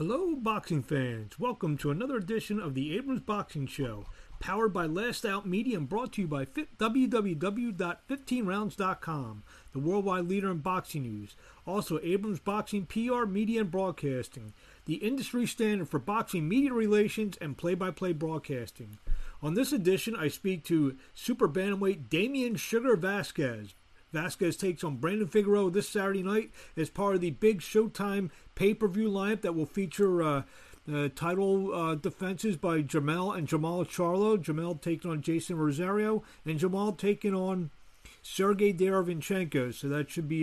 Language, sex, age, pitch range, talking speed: English, male, 40-59, 155-200 Hz, 150 wpm